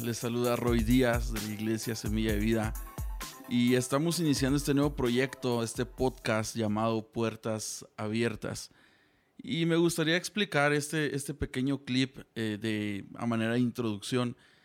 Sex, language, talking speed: male, Spanish, 145 wpm